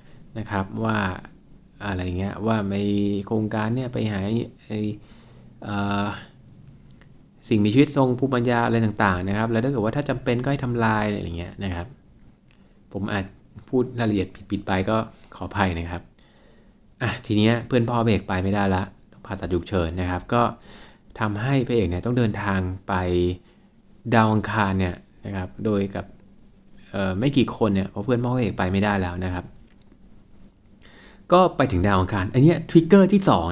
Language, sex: Thai, male